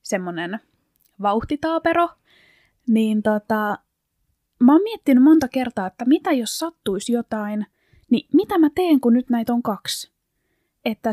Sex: female